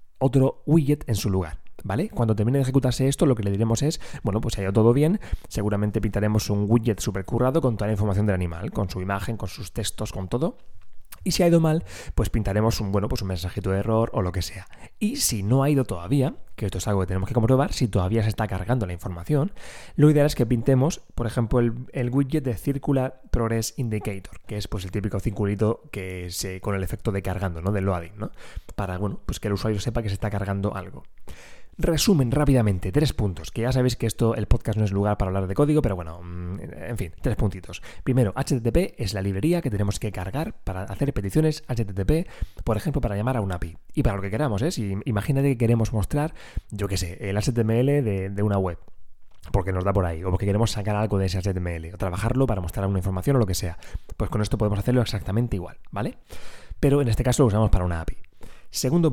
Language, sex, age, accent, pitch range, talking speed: Spanish, male, 20-39, Spanish, 95-130 Hz, 230 wpm